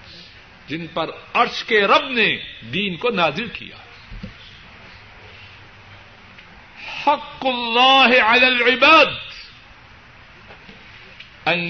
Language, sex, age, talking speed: Urdu, male, 60-79, 75 wpm